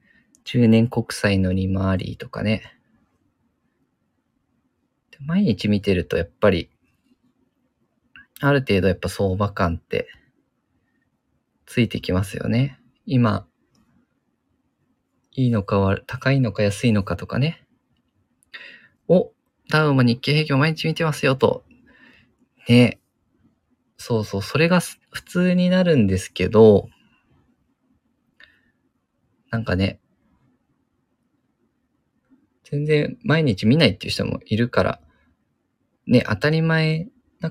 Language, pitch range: Japanese, 110-155 Hz